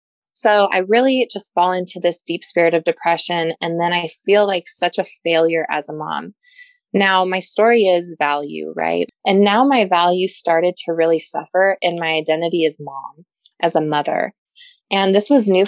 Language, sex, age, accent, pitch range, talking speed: English, female, 20-39, American, 165-195 Hz, 185 wpm